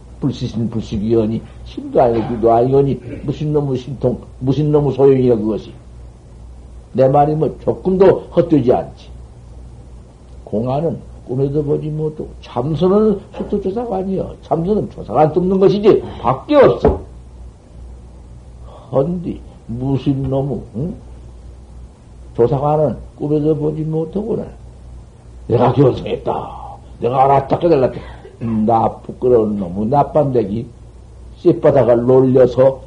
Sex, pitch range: male, 95-150 Hz